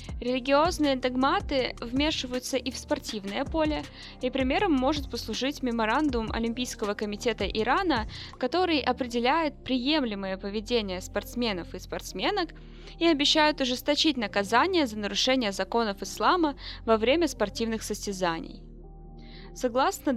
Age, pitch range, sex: 20-39, 215-285 Hz, female